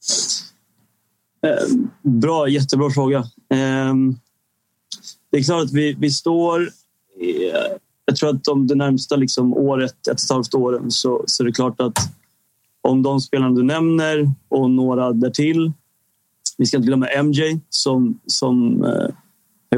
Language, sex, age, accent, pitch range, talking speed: Swedish, male, 30-49, native, 120-145 Hz, 150 wpm